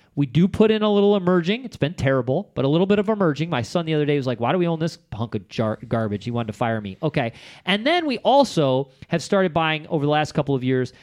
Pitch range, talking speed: 140-205 Hz, 270 wpm